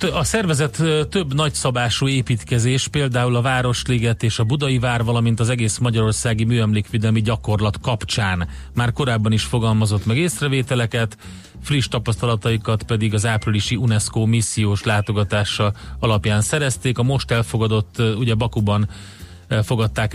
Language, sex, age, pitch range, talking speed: Hungarian, male, 30-49, 105-120 Hz, 120 wpm